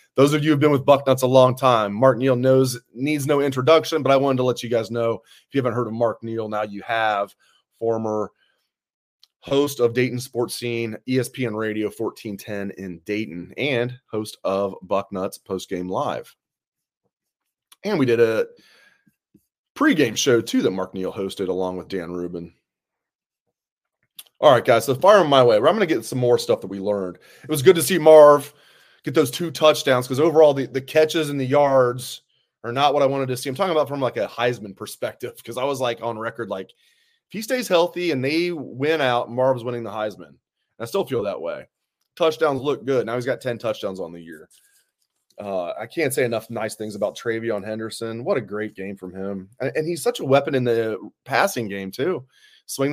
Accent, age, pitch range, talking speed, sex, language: American, 30-49, 110-145 Hz, 205 wpm, male, English